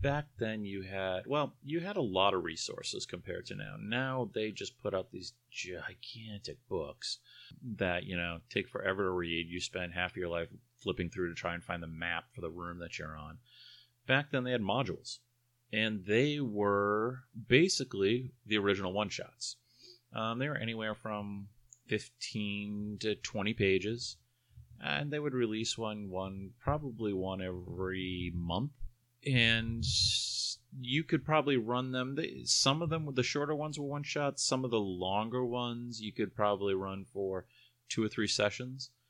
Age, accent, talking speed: 30-49, American, 165 wpm